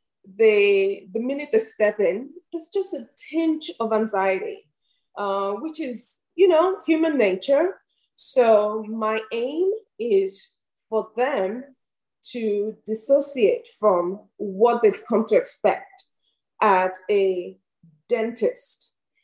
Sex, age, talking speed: female, 20-39, 110 wpm